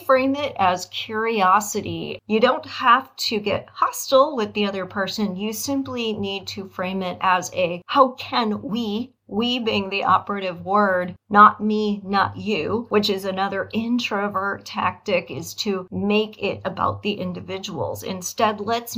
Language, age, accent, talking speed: English, 40-59, American, 150 wpm